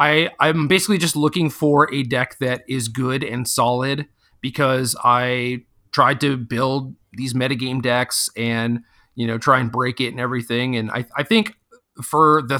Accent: American